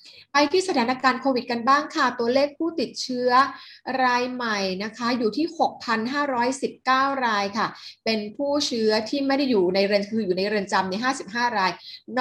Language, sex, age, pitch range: Thai, female, 30-49, 200-255 Hz